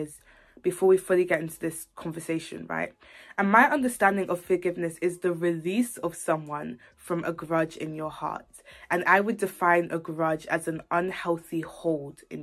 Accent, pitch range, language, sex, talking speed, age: British, 165-190 Hz, English, female, 170 wpm, 20-39